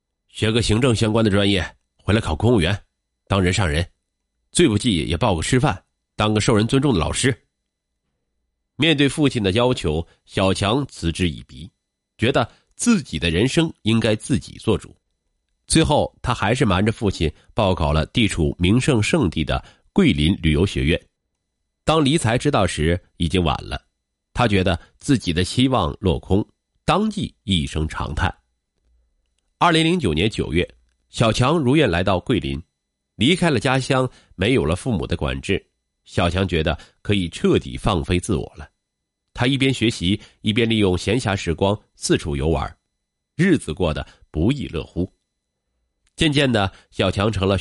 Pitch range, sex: 80-115 Hz, male